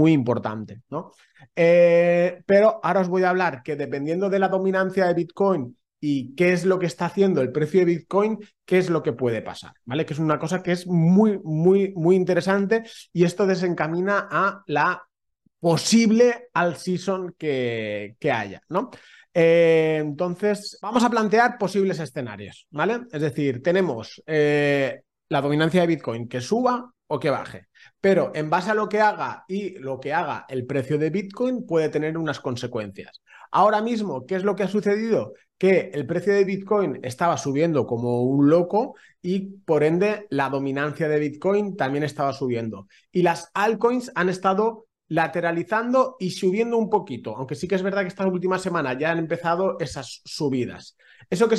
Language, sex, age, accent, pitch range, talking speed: Spanish, male, 30-49, Spanish, 150-195 Hz, 175 wpm